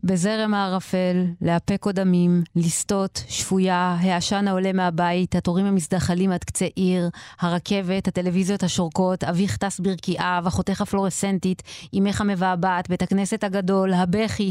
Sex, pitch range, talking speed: female, 185-220 Hz, 120 wpm